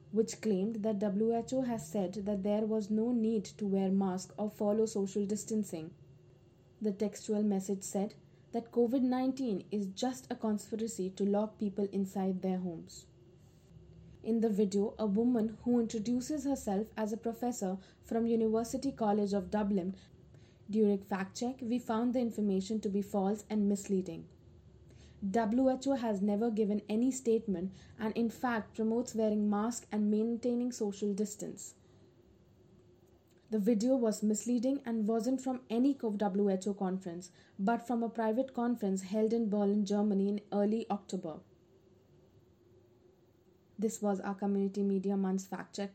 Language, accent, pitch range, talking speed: Malayalam, native, 200-230 Hz, 140 wpm